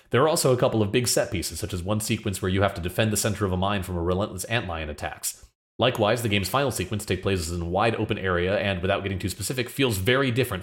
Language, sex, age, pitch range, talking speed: English, male, 30-49, 90-115 Hz, 270 wpm